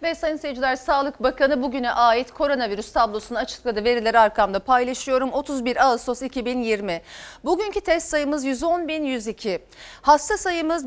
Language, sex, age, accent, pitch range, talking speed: Turkish, female, 40-59, native, 225-300 Hz, 120 wpm